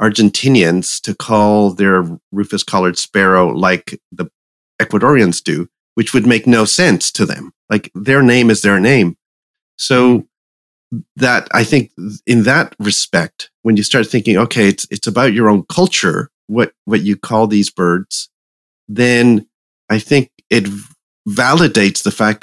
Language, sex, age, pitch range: English, male, 40-59, 100-125 Hz